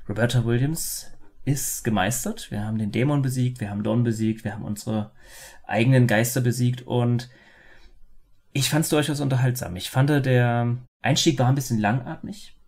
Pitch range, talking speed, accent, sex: 110-130 Hz, 155 wpm, German, male